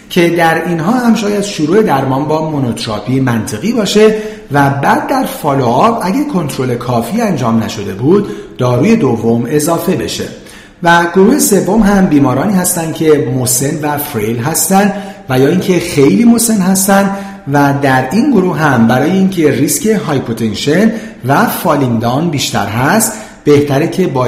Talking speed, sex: 145 wpm, male